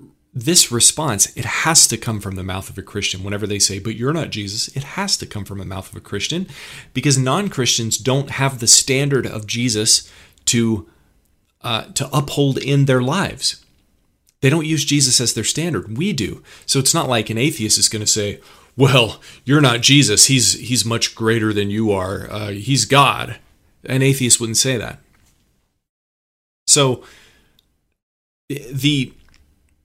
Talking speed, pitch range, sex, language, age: 170 wpm, 100-130 Hz, male, English, 30-49